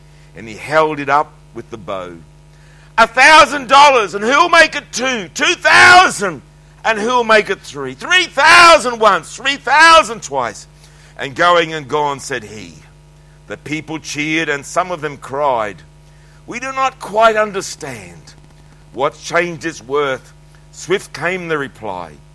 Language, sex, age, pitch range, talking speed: English, male, 60-79, 110-170 Hz, 155 wpm